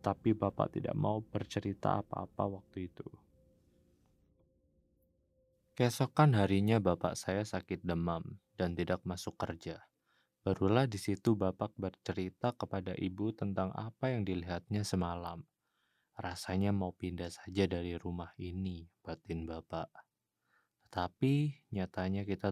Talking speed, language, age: 110 wpm, Indonesian, 20-39